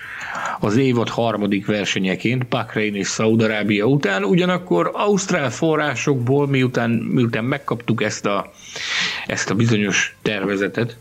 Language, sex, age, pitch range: Hungarian, male, 50-69, 115-160 Hz